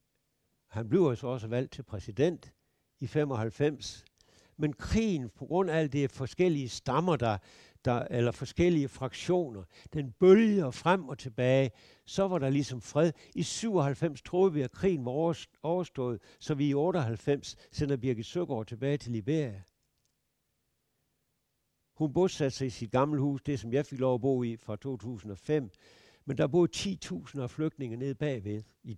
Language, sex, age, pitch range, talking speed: Danish, male, 60-79, 115-150 Hz, 155 wpm